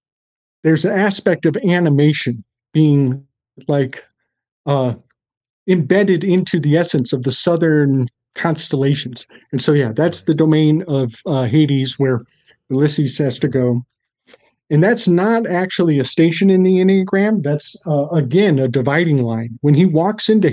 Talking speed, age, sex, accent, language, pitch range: 145 wpm, 50-69, male, American, English, 135-165 Hz